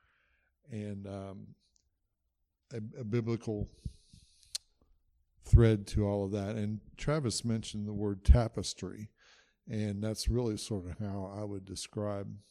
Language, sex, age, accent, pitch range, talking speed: English, male, 60-79, American, 100-110 Hz, 120 wpm